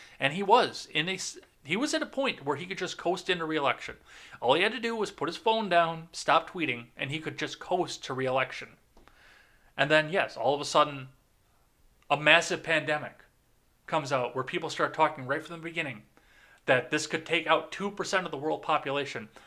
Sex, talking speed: male, 205 wpm